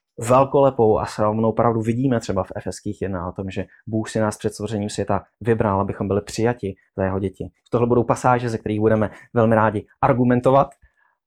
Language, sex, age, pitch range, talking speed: Czech, male, 20-39, 105-120 Hz, 185 wpm